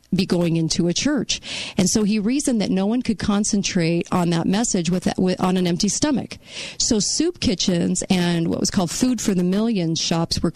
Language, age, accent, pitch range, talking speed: English, 40-59, American, 175-215 Hz, 210 wpm